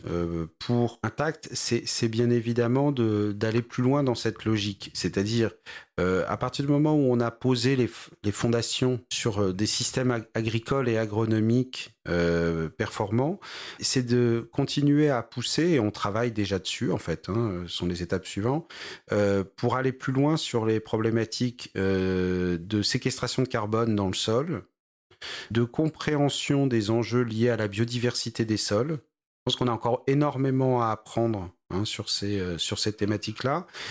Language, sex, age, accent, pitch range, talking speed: French, male, 40-59, French, 105-130 Hz, 170 wpm